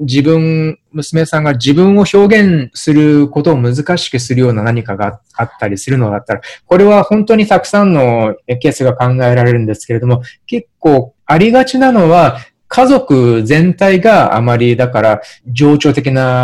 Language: Japanese